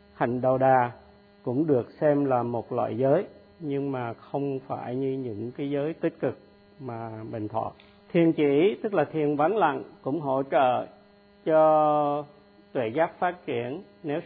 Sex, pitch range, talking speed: male, 120-185 Hz, 165 wpm